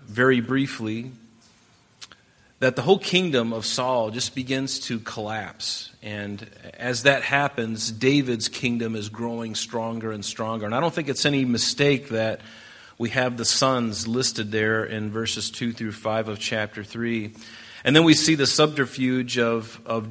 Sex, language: male, English